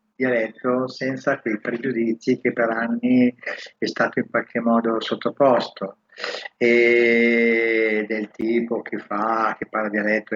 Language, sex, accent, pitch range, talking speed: Italian, male, native, 110-120 Hz, 120 wpm